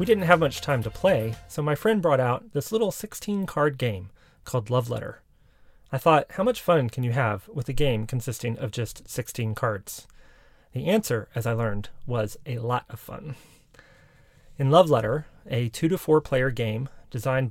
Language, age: English, 30-49